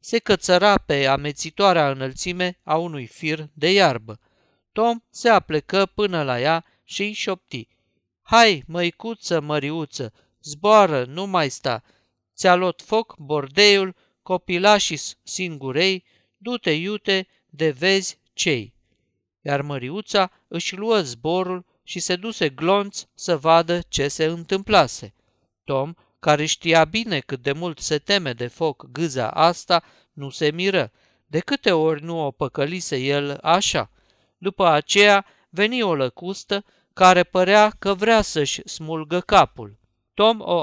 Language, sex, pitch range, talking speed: Romanian, male, 140-195 Hz, 130 wpm